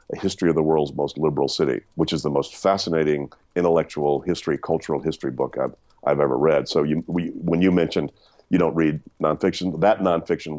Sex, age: male, 50-69